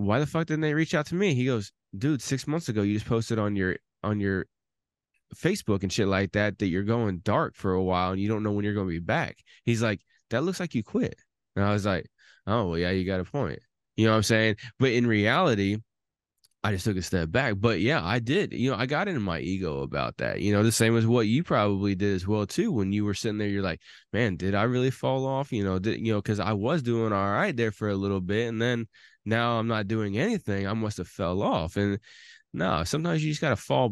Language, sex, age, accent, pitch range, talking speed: English, male, 20-39, American, 100-120 Hz, 260 wpm